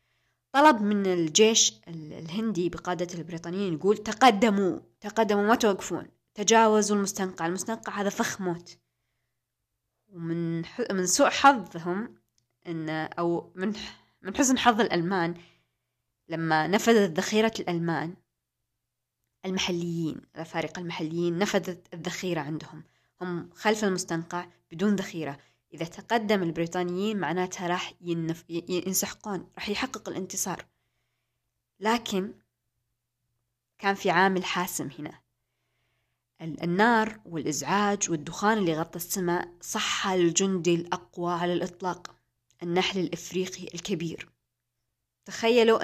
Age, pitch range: 20-39, 165-200 Hz